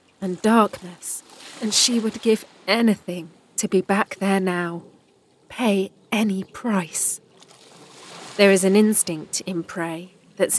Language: English